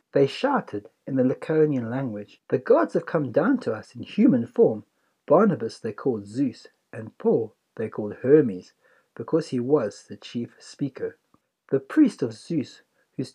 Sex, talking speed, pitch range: male, 160 wpm, 120-155 Hz